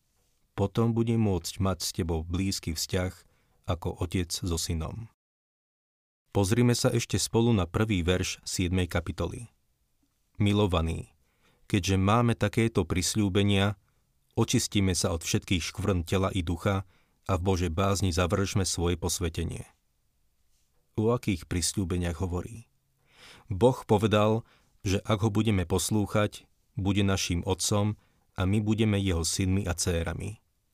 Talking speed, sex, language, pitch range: 120 wpm, male, Slovak, 90-105 Hz